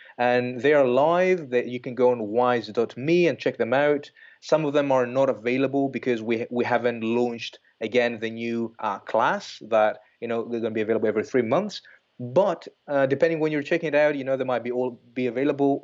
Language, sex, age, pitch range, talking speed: English, male, 30-49, 115-155 Hz, 215 wpm